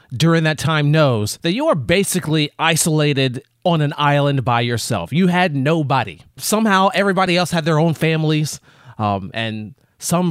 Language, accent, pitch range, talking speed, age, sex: English, American, 140-185 Hz, 155 wpm, 30-49, male